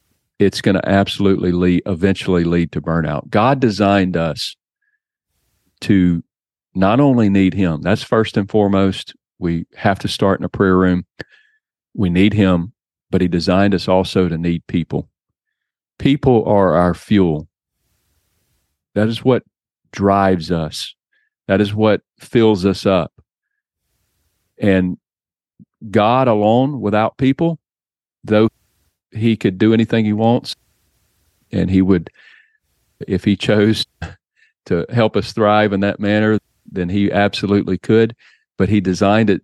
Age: 40-59